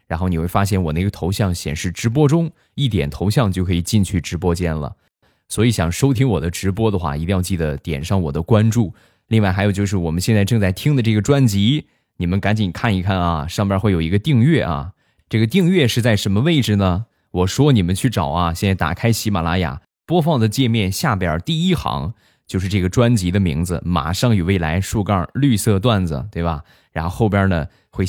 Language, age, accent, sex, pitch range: Chinese, 20-39, native, male, 90-120 Hz